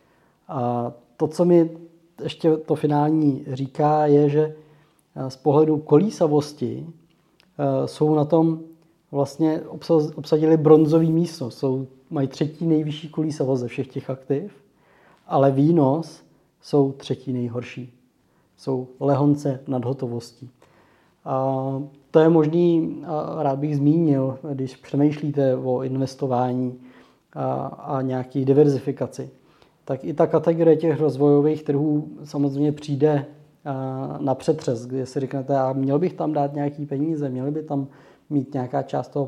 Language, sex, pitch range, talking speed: Czech, male, 135-155 Hz, 120 wpm